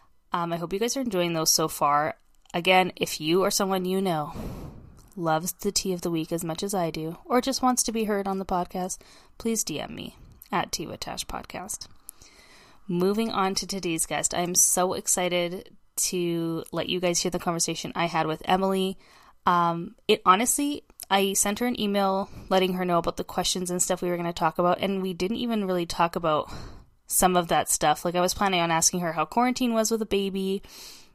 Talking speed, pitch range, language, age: 210 wpm, 170-195 Hz, English, 20-39